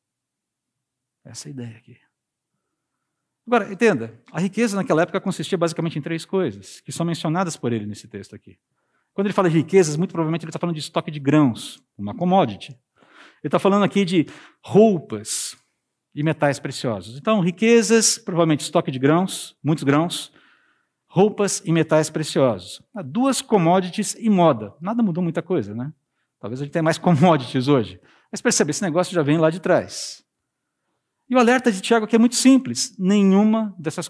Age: 50-69